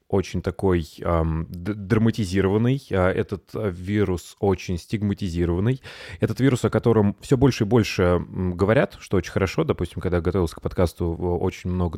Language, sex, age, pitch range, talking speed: Russian, male, 20-39, 90-110 Hz, 135 wpm